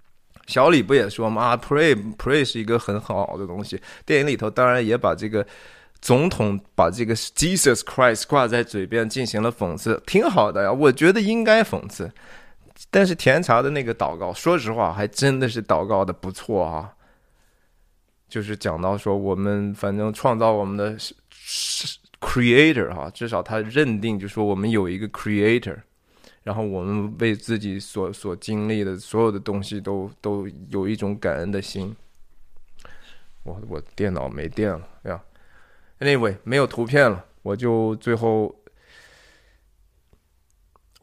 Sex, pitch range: male, 100-120 Hz